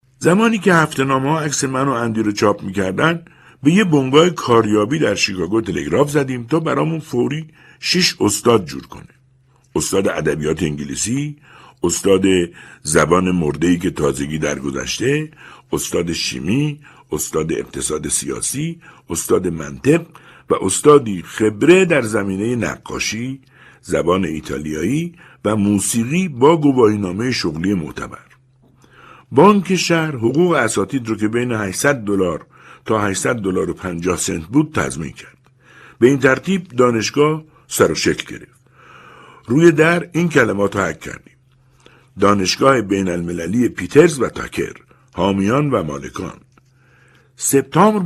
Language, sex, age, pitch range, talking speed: Persian, male, 60-79, 100-150 Hz, 120 wpm